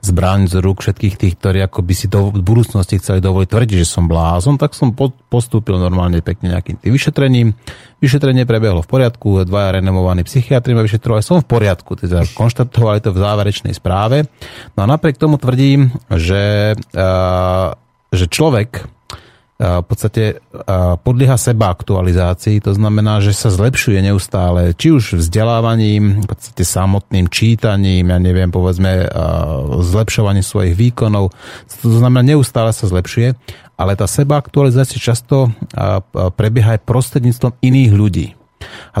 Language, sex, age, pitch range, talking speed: Slovak, male, 30-49, 95-120 Hz, 140 wpm